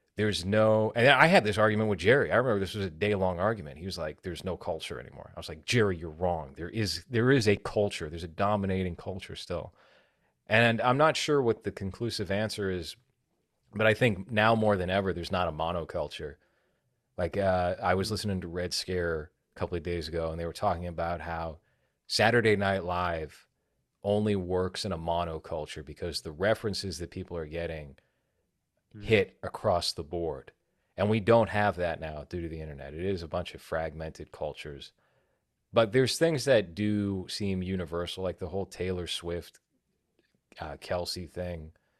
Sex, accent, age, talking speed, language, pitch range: male, American, 30-49, 185 wpm, English, 85-105 Hz